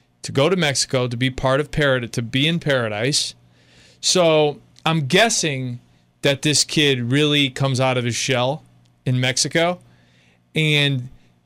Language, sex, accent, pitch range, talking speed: English, male, American, 130-170 Hz, 145 wpm